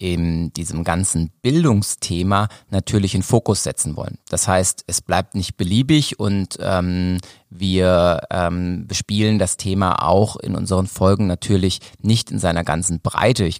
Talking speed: 145 wpm